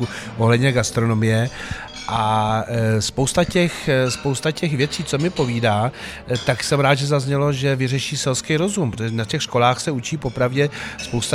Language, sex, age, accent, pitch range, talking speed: Czech, male, 40-59, native, 115-135 Hz, 150 wpm